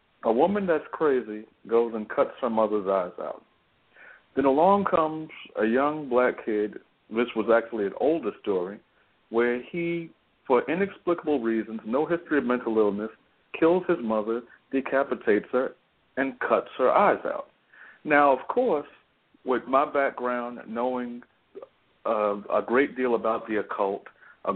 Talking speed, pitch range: 145 wpm, 110-145 Hz